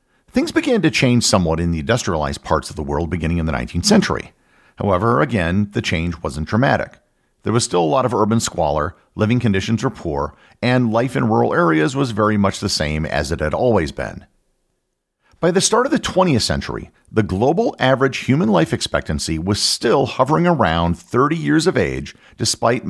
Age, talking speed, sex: 50-69, 190 wpm, male